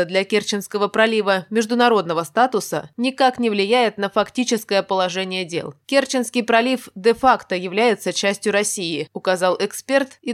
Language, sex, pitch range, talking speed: Russian, female, 190-245 Hz, 120 wpm